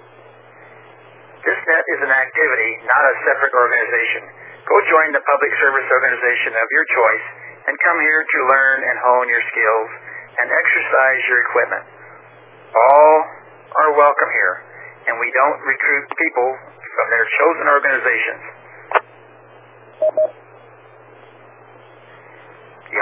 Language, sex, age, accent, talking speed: English, male, 60-79, American, 115 wpm